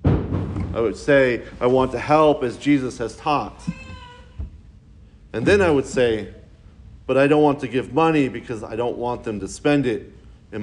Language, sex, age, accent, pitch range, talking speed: English, male, 40-59, American, 105-135 Hz, 180 wpm